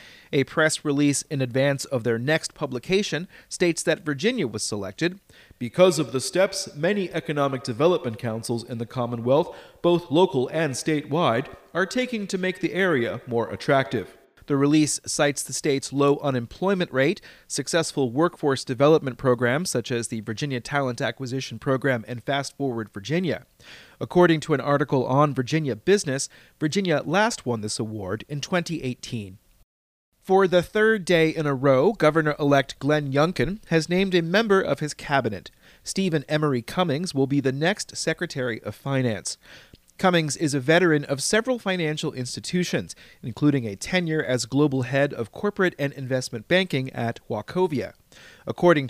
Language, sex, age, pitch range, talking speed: English, male, 30-49, 130-170 Hz, 150 wpm